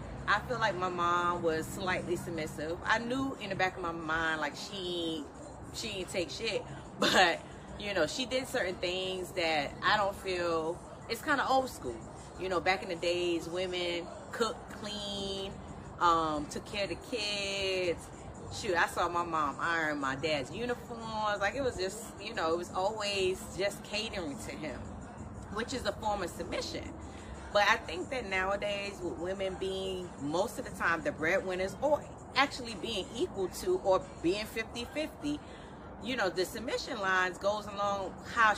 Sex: female